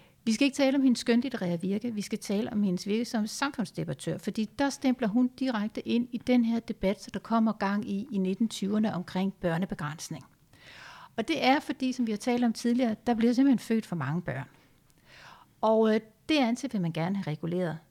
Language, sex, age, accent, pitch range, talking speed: Danish, female, 60-79, native, 185-240 Hz, 200 wpm